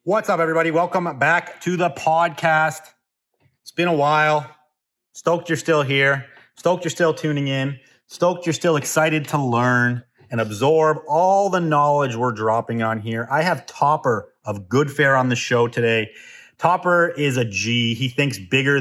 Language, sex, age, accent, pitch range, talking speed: English, male, 30-49, American, 120-150 Hz, 165 wpm